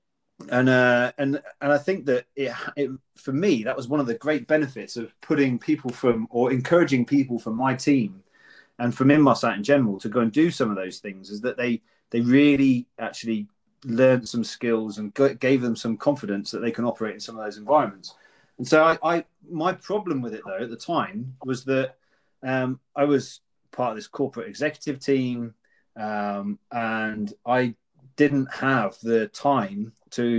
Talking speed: 195 wpm